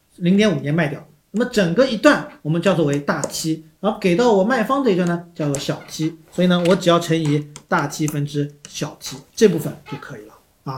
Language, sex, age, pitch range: Chinese, male, 40-59, 155-220 Hz